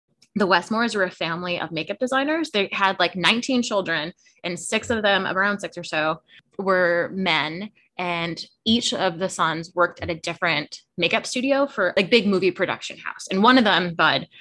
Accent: American